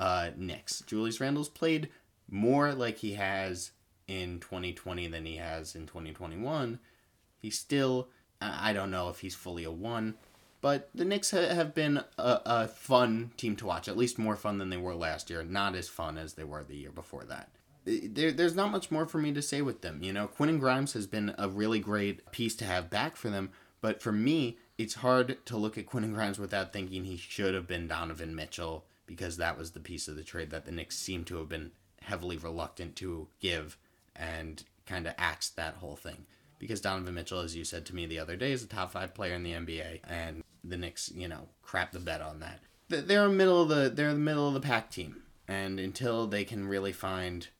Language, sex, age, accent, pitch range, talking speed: English, male, 30-49, American, 85-115 Hz, 215 wpm